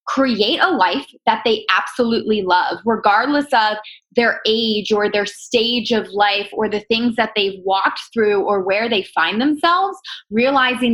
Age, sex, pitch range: 20-39, female, 205-265 Hz